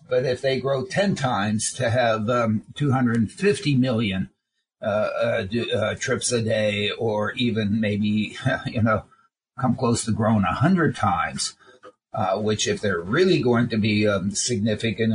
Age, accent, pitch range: 50-69, American, 110-130 Hz